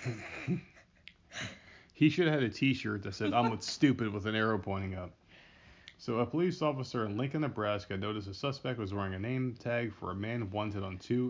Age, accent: 20-39, American